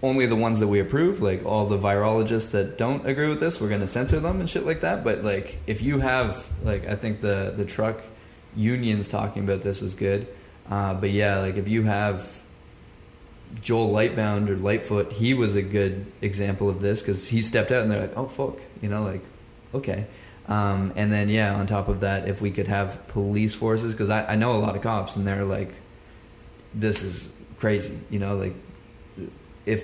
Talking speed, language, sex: 205 wpm, English, male